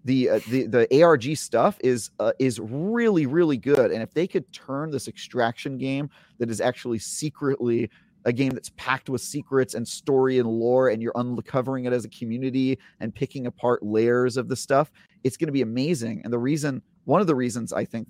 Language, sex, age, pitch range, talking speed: English, male, 30-49, 115-140 Hz, 205 wpm